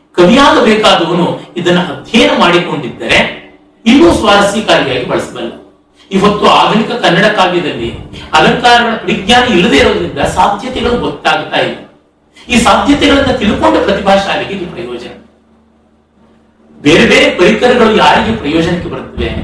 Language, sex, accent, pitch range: Kannada, male, native, 165-225 Hz